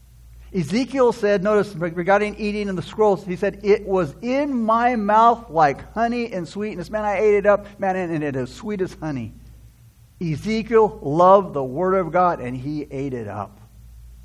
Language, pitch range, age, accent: English, 140-210 Hz, 60-79, American